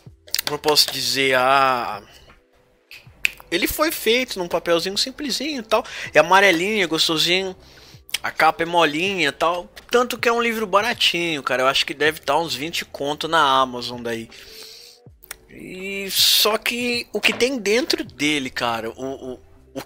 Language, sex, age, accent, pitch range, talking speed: Portuguese, male, 20-39, Brazilian, 135-195 Hz, 155 wpm